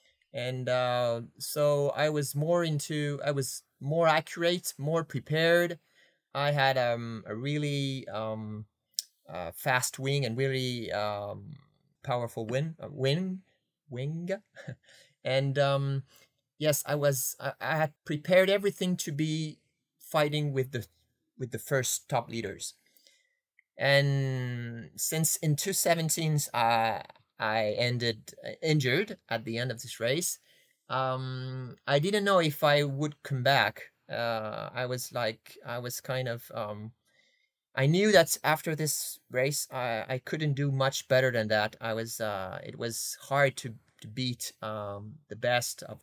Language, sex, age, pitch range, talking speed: English, male, 30-49, 125-155 Hz, 145 wpm